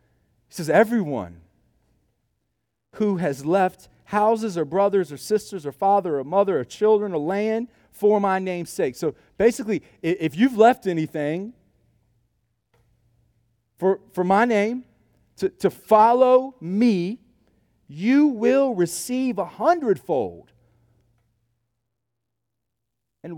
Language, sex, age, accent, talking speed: English, male, 40-59, American, 110 wpm